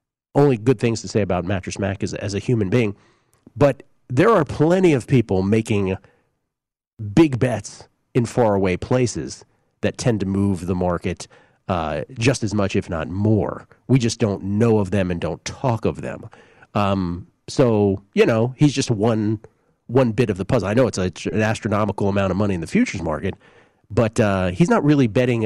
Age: 40-59